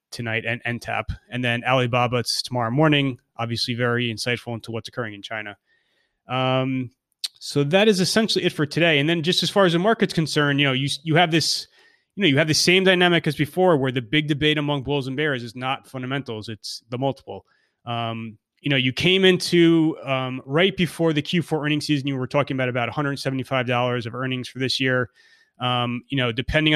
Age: 30-49